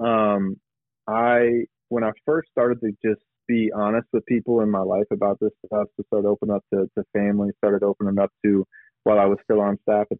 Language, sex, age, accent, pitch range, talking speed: English, male, 30-49, American, 100-110 Hz, 220 wpm